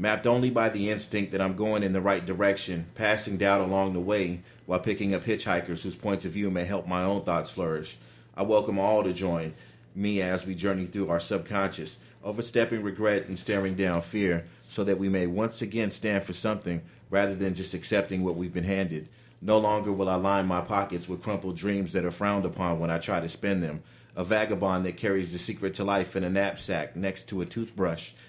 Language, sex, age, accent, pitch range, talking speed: English, male, 40-59, American, 90-100 Hz, 215 wpm